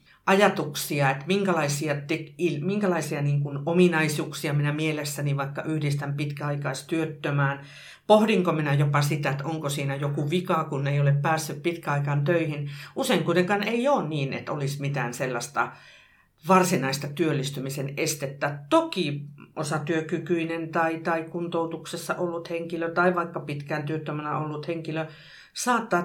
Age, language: 50-69, Finnish